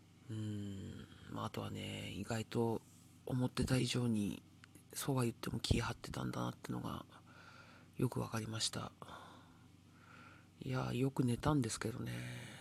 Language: Japanese